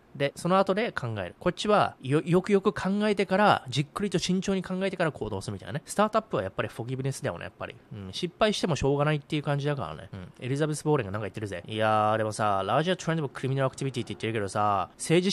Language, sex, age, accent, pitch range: Japanese, male, 20-39, native, 110-155 Hz